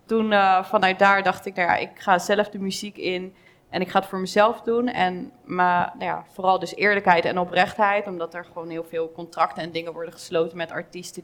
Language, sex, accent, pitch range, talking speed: Dutch, female, Dutch, 170-195 Hz, 225 wpm